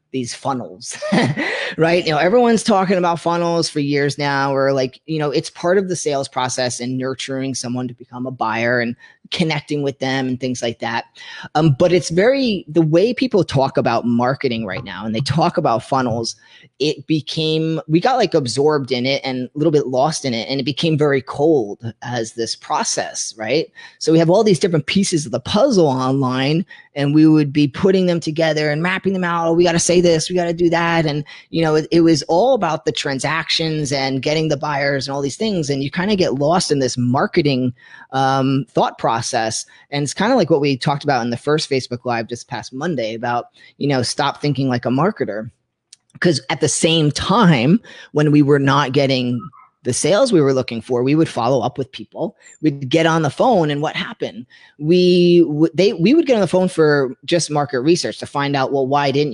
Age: 30-49